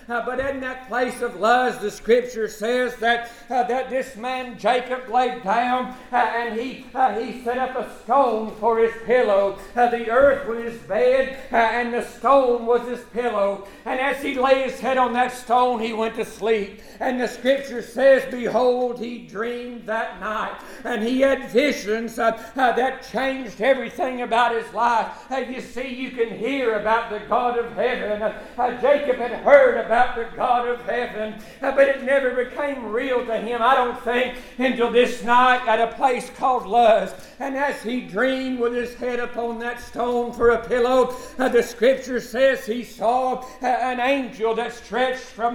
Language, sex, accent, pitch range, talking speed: English, male, American, 235-260 Hz, 185 wpm